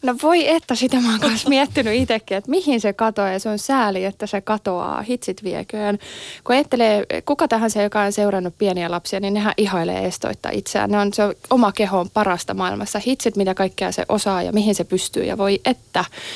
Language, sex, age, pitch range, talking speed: Finnish, female, 20-39, 195-245 Hz, 205 wpm